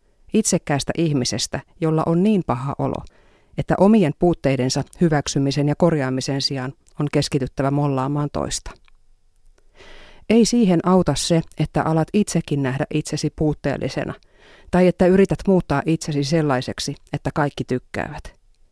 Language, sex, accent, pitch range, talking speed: Finnish, female, native, 135-175 Hz, 120 wpm